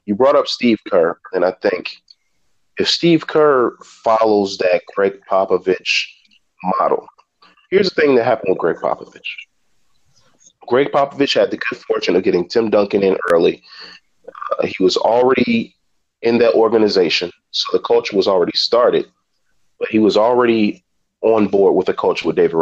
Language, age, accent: English, 30-49, American